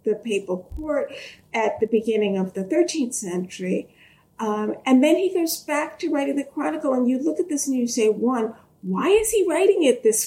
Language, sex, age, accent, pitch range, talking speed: English, female, 50-69, American, 215-295 Hz, 205 wpm